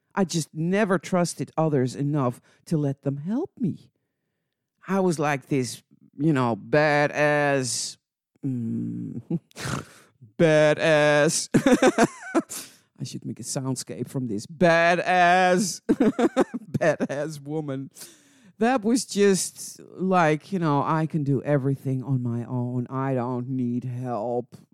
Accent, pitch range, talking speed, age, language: American, 125-175 Hz, 115 wpm, 50-69, English